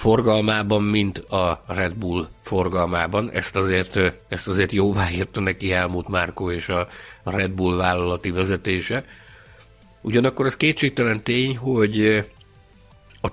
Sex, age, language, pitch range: male, 60-79, Hungarian, 95-130 Hz